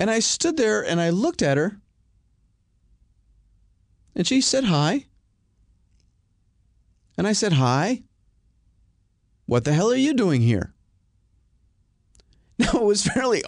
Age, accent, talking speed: 40-59, American, 125 wpm